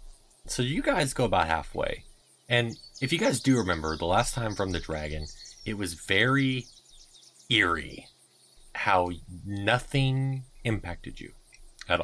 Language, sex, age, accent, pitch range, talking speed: English, male, 30-49, American, 85-125 Hz, 135 wpm